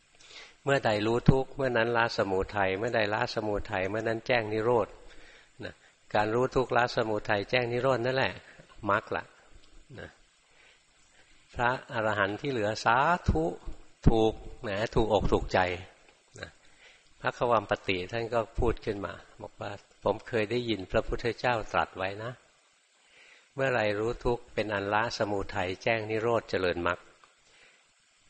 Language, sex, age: Thai, male, 60-79